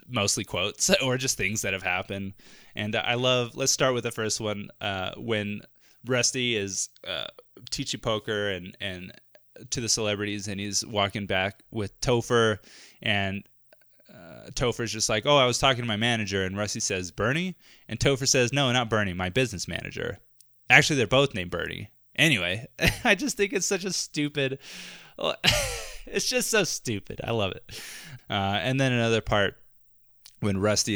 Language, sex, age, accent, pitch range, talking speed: English, male, 20-39, American, 100-130 Hz, 170 wpm